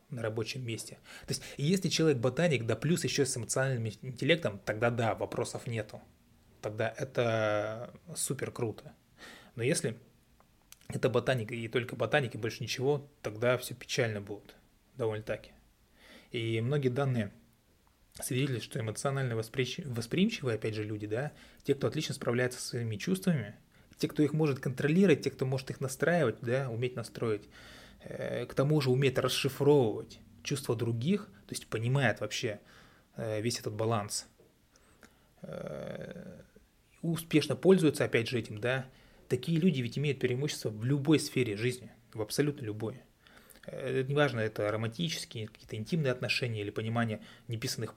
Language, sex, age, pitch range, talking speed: Russian, male, 20-39, 110-140 Hz, 140 wpm